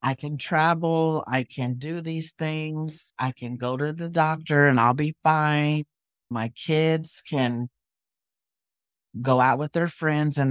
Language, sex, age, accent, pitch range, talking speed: English, male, 50-69, American, 115-135 Hz, 155 wpm